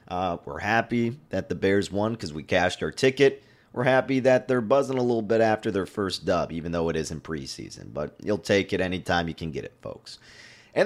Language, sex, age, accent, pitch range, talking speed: English, male, 30-49, American, 90-120 Hz, 225 wpm